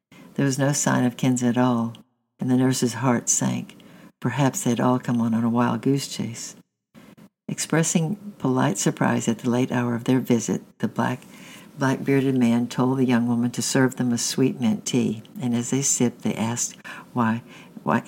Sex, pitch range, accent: female, 120-140 Hz, American